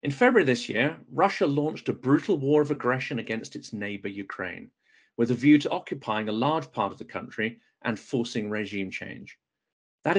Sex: male